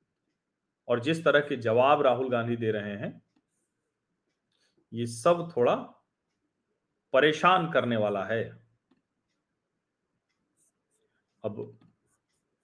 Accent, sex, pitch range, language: native, male, 115-145 Hz, Hindi